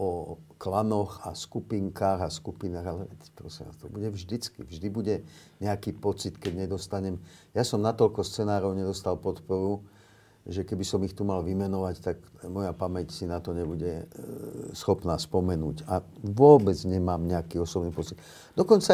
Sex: male